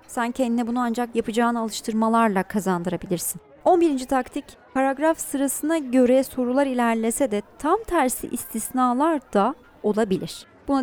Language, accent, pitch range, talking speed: Turkish, native, 220-305 Hz, 115 wpm